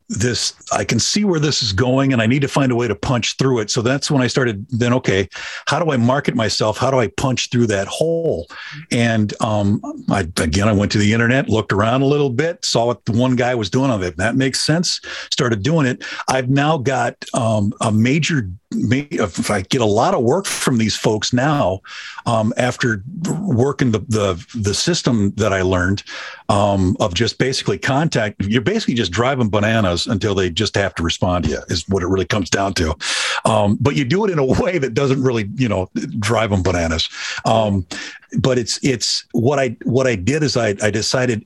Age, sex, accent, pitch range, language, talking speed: 50-69, male, American, 105-130 Hz, English, 215 wpm